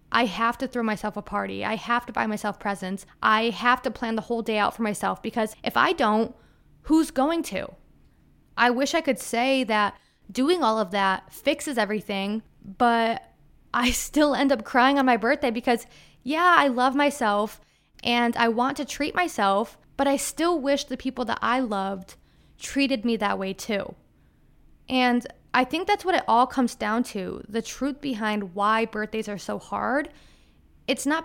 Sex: female